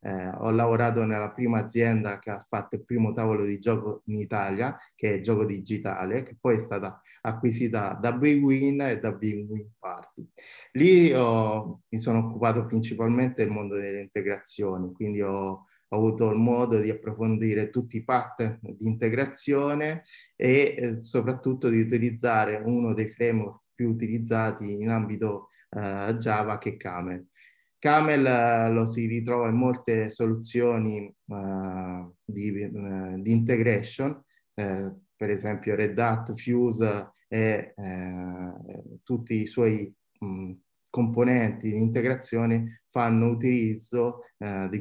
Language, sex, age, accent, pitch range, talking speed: Italian, male, 20-39, native, 105-120 Hz, 140 wpm